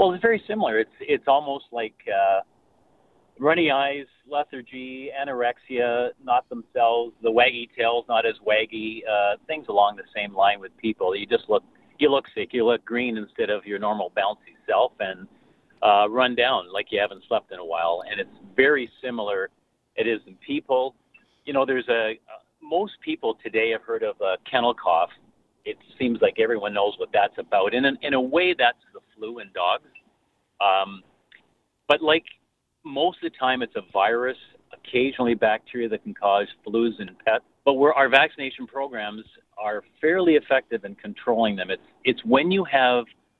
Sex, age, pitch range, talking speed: male, 50-69, 110-145 Hz, 175 wpm